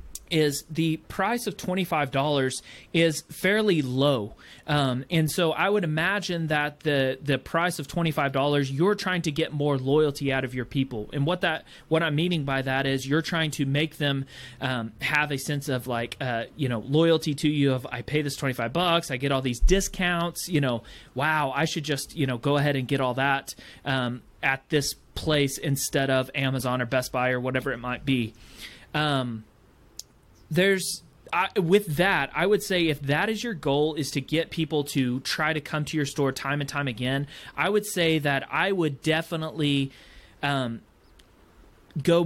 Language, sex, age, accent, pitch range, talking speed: English, male, 30-49, American, 130-155 Hz, 190 wpm